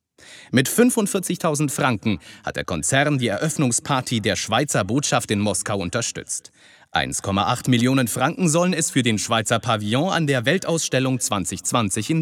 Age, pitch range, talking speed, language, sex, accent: 40-59, 110-160 Hz, 140 wpm, German, male, German